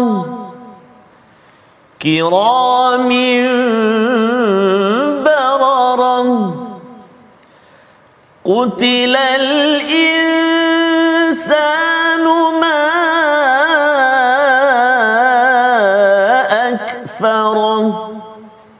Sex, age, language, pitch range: male, 40-59, Malayalam, 245-290 Hz